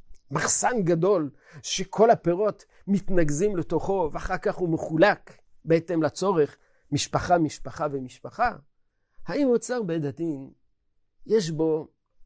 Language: Hebrew